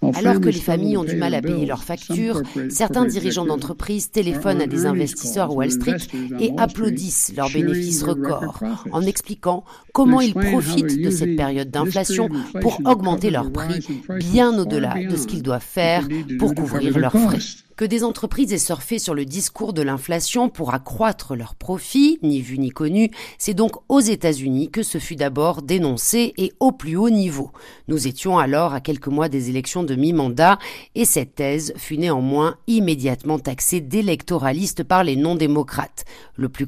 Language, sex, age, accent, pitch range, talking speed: French, female, 40-59, French, 145-215 Hz, 175 wpm